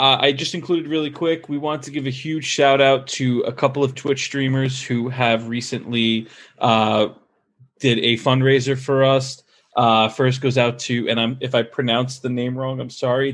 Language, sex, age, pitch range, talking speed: English, male, 20-39, 125-155 Hz, 200 wpm